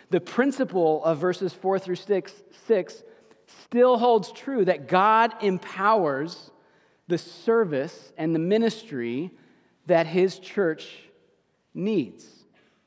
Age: 40-59